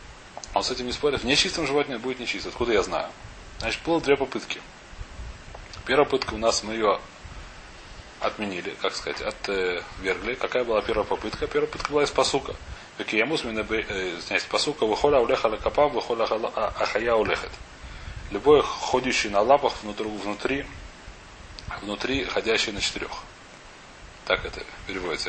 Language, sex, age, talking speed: Russian, male, 30-49, 130 wpm